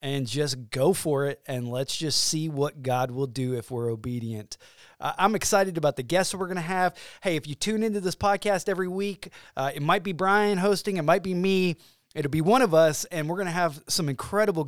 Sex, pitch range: male, 145-190 Hz